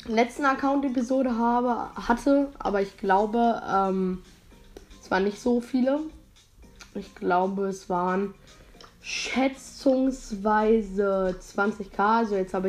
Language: German